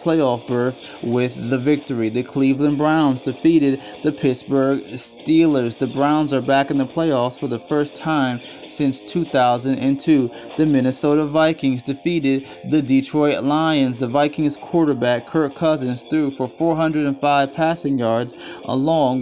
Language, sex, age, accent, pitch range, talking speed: English, male, 30-49, American, 125-155 Hz, 135 wpm